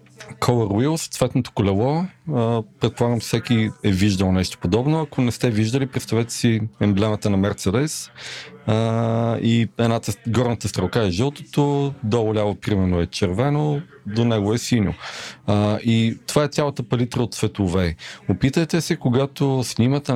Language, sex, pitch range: Bulgarian, male, 100-130 Hz